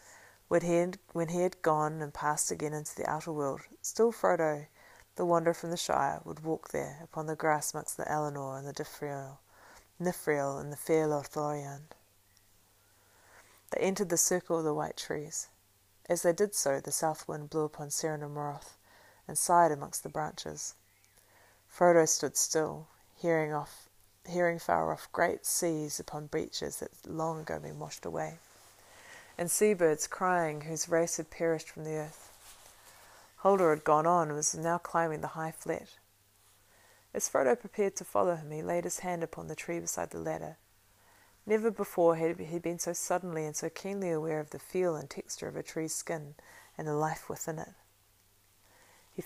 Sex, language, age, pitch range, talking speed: female, English, 30-49, 145-170 Hz, 175 wpm